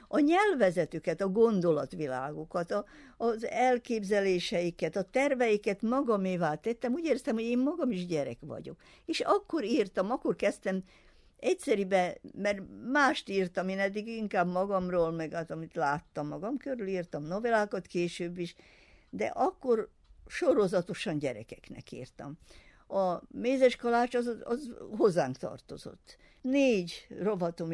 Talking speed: 120 wpm